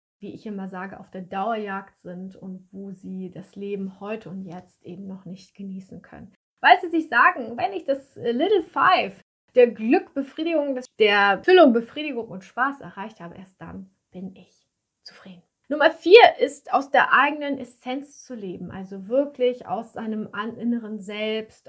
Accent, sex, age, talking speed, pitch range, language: German, female, 30-49, 165 wpm, 195-245 Hz, German